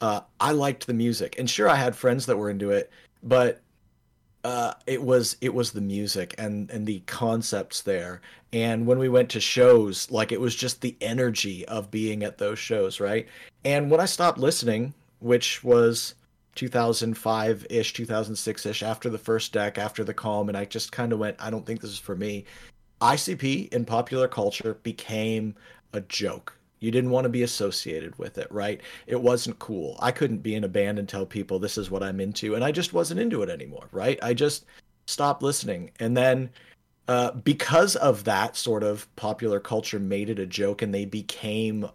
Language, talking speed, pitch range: English, 195 wpm, 105-125 Hz